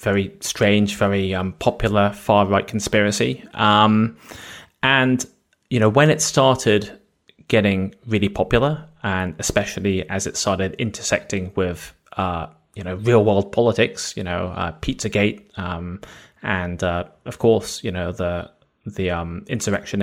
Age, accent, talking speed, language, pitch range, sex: 20-39, British, 130 wpm, English, 95-125 Hz, male